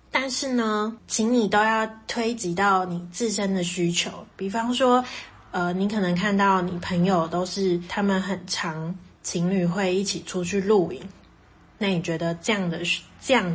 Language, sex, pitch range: Chinese, female, 175-210 Hz